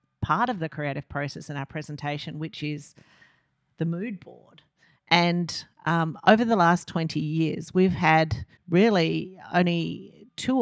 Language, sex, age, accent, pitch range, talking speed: English, female, 40-59, Australian, 150-175 Hz, 140 wpm